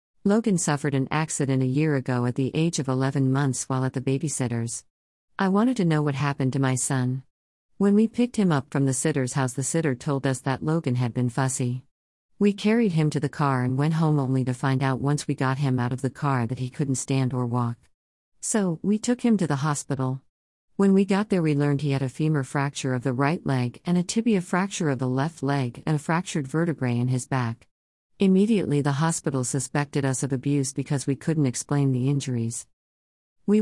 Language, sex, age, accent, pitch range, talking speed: English, female, 50-69, American, 130-160 Hz, 220 wpm